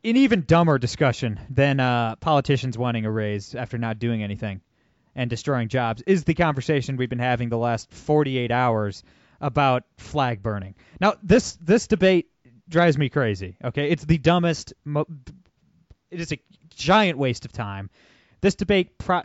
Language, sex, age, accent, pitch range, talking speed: English, male, 20-39, American, 115-150 Hz, 160 wpm